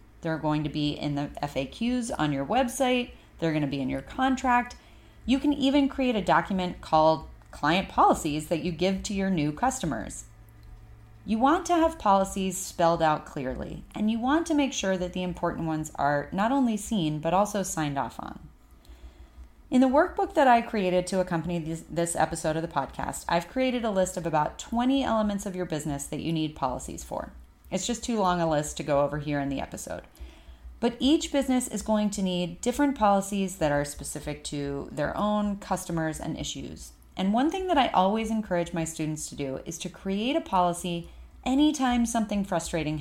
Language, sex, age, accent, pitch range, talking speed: English, female, 30-49, American, 150-230 Hz, 195 wpm